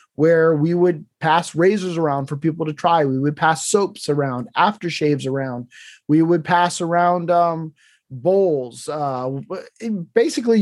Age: 30-49